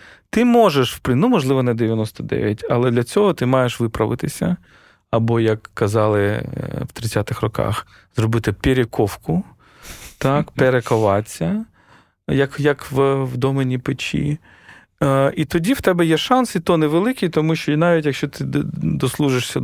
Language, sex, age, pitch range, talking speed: Ukrainian, male, 40-59, 115-165 Hz, 125 wpm